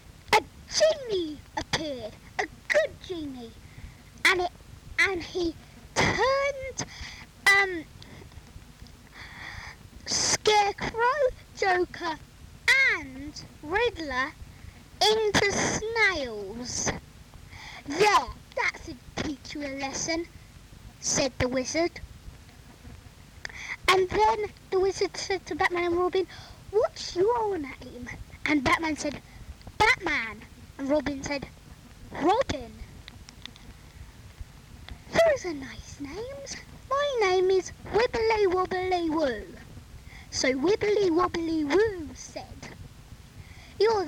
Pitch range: 310-420 Hz